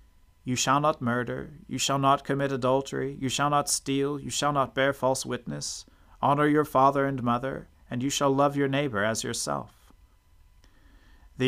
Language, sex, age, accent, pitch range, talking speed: English, male, 40-59, American, 95-140 Hz, 175 wpm